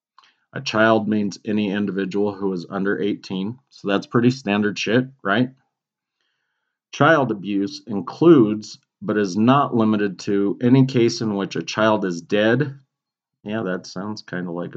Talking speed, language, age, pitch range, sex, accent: 150 wpm, English, 40-59, 105-130 Hz, male, American